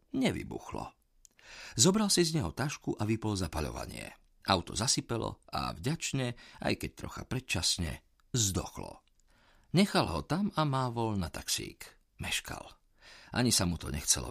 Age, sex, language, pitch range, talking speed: 50-69, male, Slovak, 80-120 Hz, 135 wpm